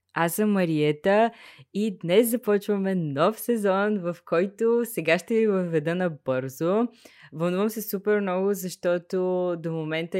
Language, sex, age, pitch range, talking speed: Bulgarian, female, 20-39, 155-190 Hz, 135 wpm